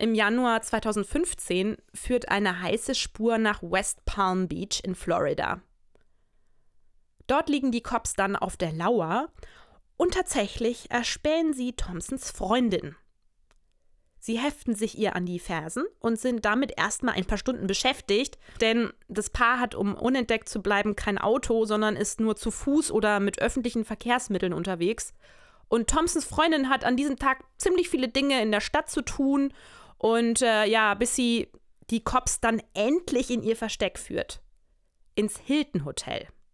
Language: German